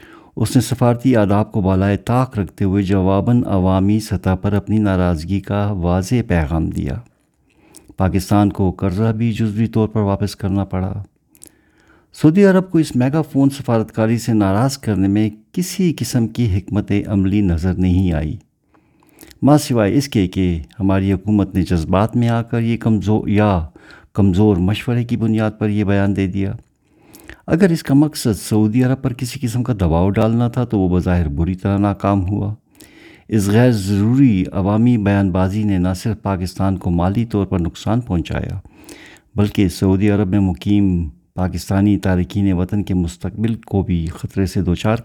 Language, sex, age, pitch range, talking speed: Urdu, male, 50-69, 95-115 Hz, 165 wpm